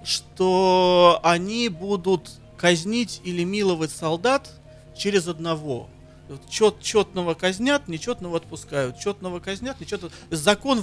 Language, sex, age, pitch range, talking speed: Russian, male, 40-59, 155-200 Hz, 95 wpm